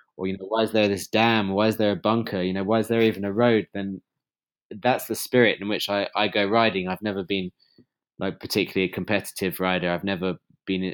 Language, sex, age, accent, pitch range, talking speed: English, male, 20-39, British, 90-100 Hz, 230 wpm